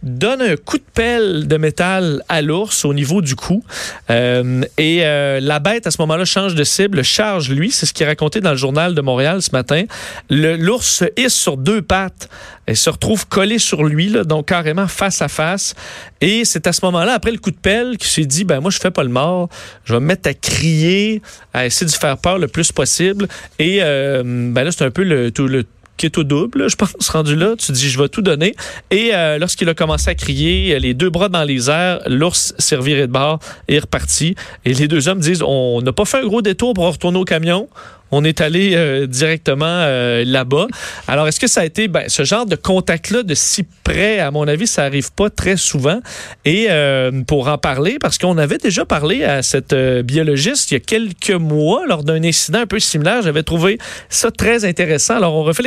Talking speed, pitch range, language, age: 235 wpm, 145-195 Hz, French, 40-59